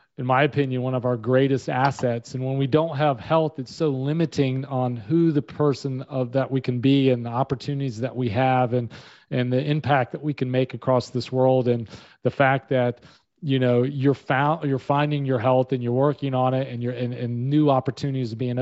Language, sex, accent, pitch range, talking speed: English, male, American, 125-140 Hz, 215 wpm